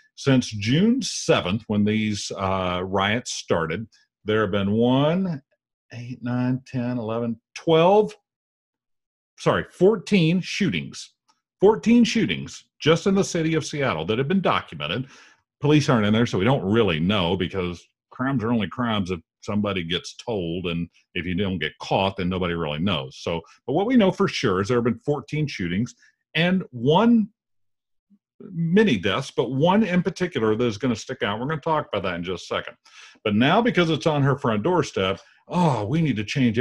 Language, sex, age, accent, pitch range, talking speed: English, male, 50-69, American, 100-160 Hz, 180 wpm